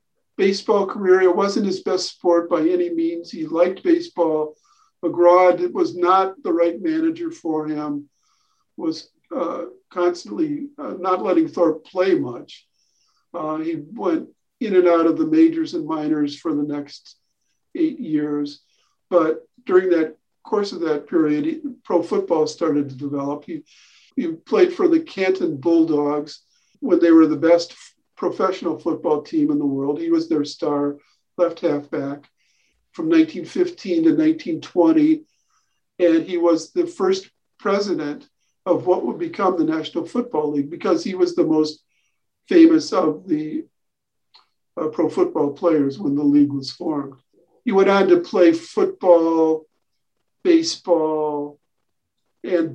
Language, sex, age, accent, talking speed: English, male, 50-69, American, 145 wpm